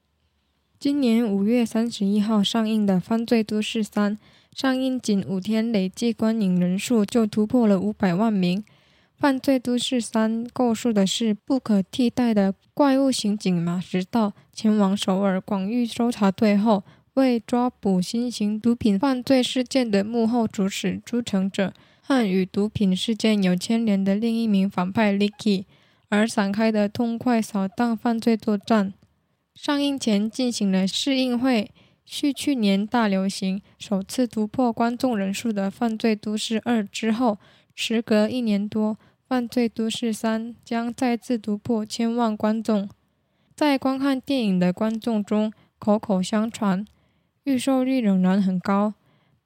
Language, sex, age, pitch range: Chinese, female, 10-29, 200-240 Hz